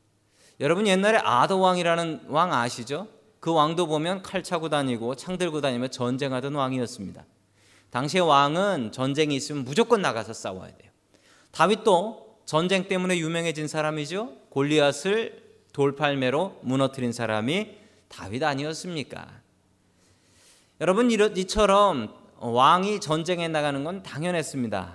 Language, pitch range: Korean, 120-185 Hz